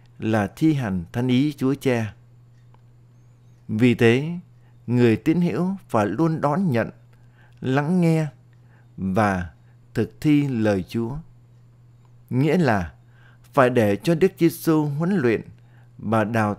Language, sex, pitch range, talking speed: Vietnamese, male, 115-130 Hz, 125 wpm